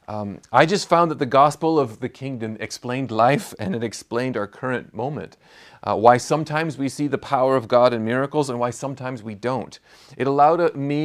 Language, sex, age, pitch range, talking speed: English, male, 40-59, 115-140 Hz, 200 wpm